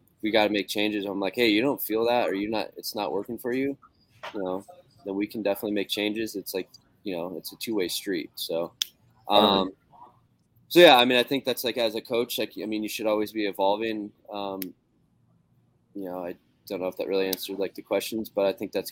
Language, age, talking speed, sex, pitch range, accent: English, 20-39, 240 wpm, male, 95-110 Hz, American